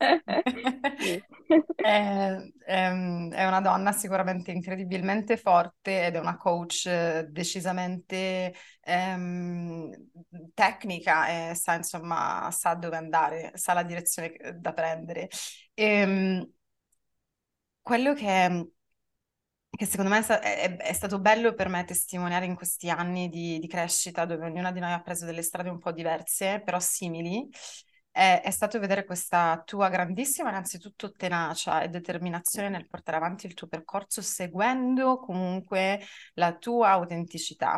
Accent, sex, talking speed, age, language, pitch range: Italian, female, 120 wpm, 20-39, English, 170-200 Hz